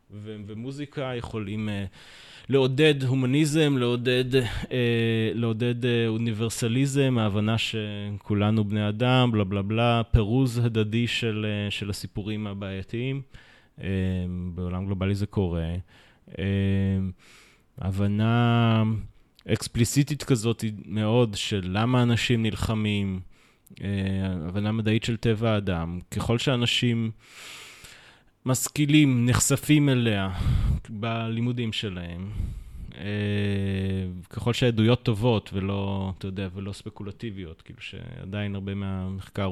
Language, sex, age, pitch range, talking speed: Hebrew, male, 20-39, 95-120 Hz, 95 wpm